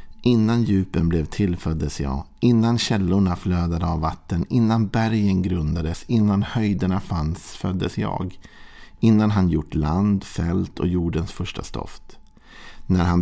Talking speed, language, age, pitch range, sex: 130 wpm, Swedish, 50-69, 80-100 Hz, male